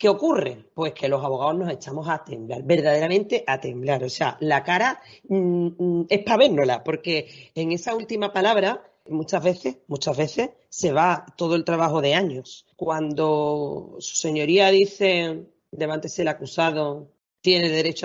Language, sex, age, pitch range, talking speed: Spanish, female, 40-59, 160-230 Hz, 155 wpm